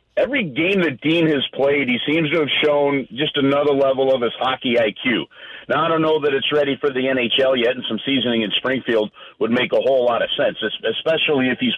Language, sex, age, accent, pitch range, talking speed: English, male, 50-69, American, 130-165 Hz, 225 wpm